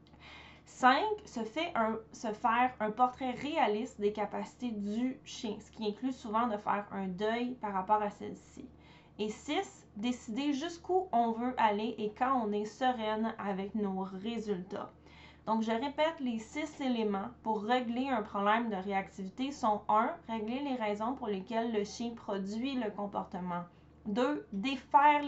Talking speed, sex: 150 wpm, female